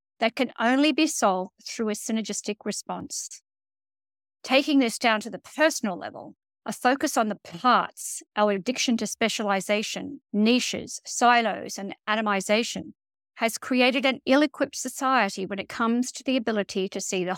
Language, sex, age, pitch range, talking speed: English, female, 50-69, 205-260 Hz, 150 wpm